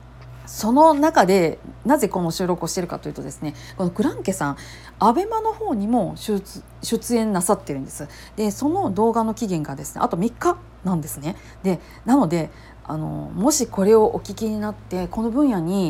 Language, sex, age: Japanese, female, 40-59